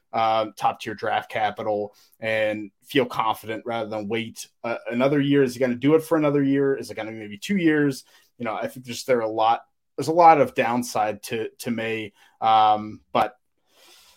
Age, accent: 20-39, American